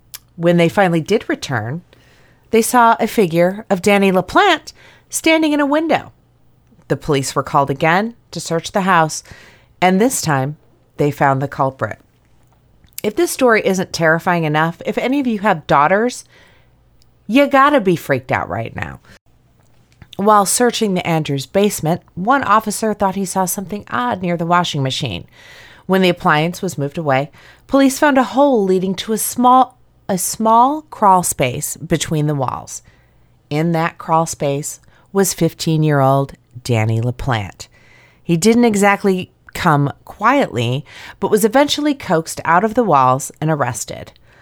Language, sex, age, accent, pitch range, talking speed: English, female, 30-49, American, 135-200 Hz, 150 wpm